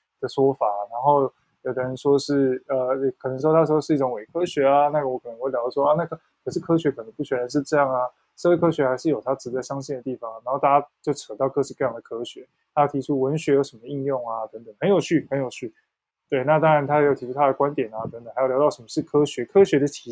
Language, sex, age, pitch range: Chinese, male, 20-39, 130-160 Hz